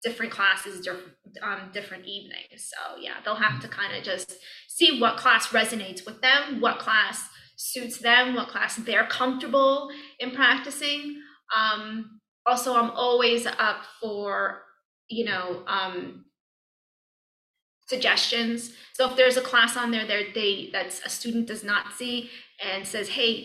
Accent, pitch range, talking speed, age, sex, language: American, 195-240 Hz, 140 wpm, 20-39, female, English